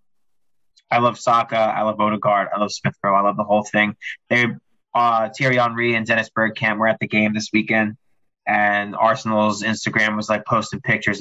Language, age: English, 20-39